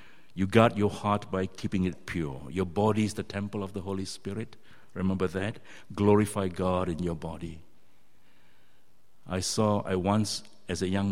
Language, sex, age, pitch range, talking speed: English, male, 60-79, 90-110 Hz, 165 wpm